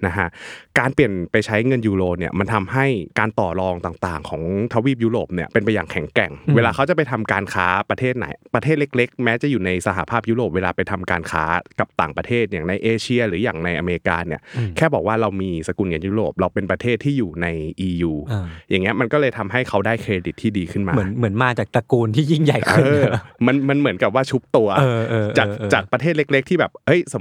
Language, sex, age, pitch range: Thai, male, 20-39, 95-125 Hz